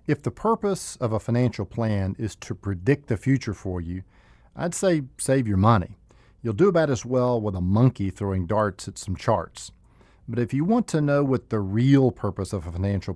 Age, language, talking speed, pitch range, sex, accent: 50-69, English, 205 wpm, 100-145 Hz, male, American